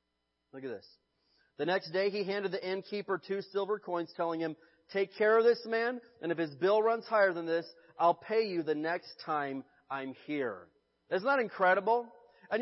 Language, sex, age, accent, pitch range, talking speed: English, male, 30-49, American, 155-210 Hz, 185 wpm